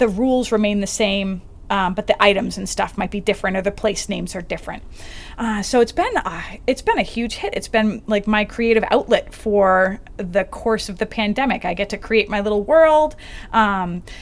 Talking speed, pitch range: 210 wpm, 205-230 Hz